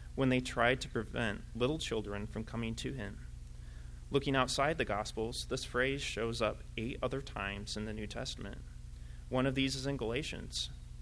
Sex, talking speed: male, 175 wpm